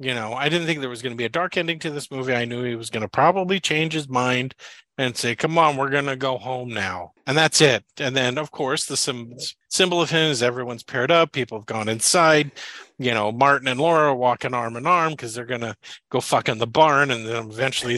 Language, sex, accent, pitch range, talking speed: English, male, American, 125-160 Hz, 255 wpm